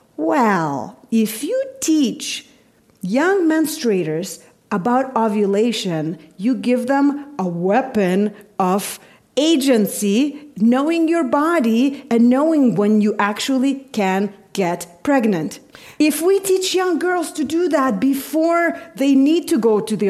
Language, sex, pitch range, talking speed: English, female, 205-270 Hz, 120 wpm